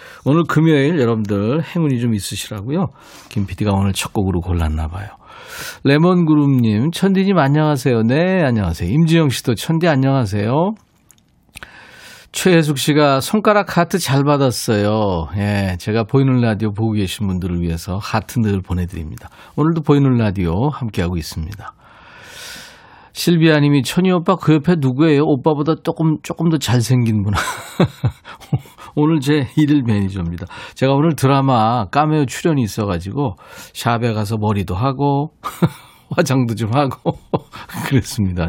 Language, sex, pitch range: Korean, male, 105-155 Hz